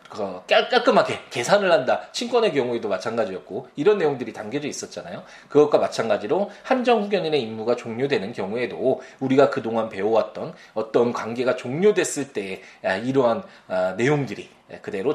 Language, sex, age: Korean, male, 20-39